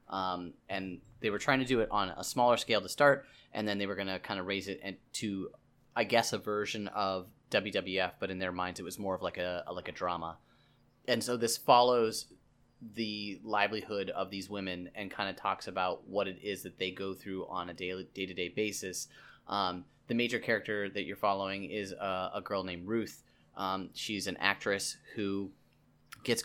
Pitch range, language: 90-105 Hz, English